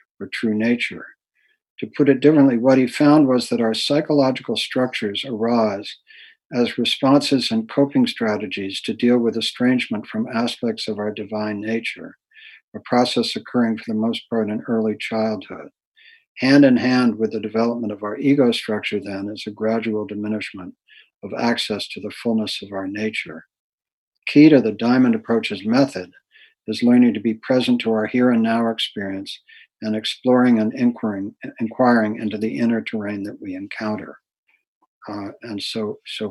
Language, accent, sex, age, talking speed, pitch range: English, American, male, 60-79, 160 wpm, 110-145 Hz